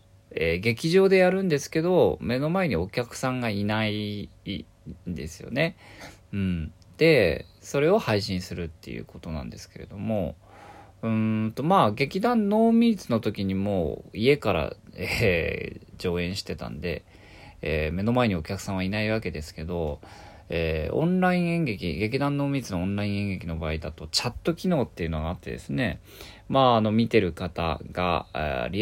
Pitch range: 90-140 Hz